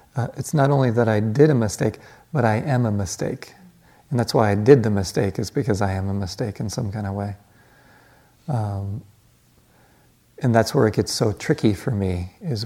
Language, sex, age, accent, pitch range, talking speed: English, male, 40-59, American, 110-150 Hz, 205 wpm